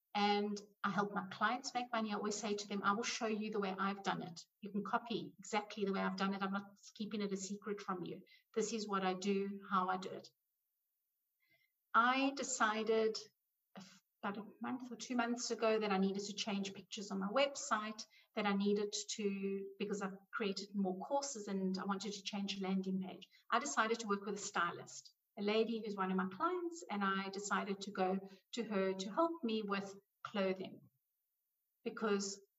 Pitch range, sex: 195-225 Hz, female